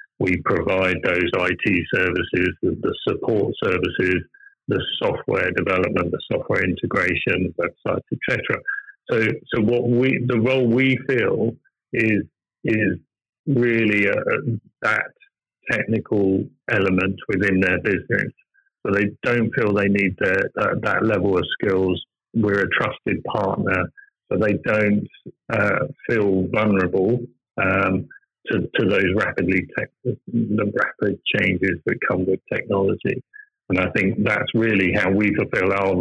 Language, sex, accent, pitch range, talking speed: English, male, British, 95-120 Hz, 130 wpm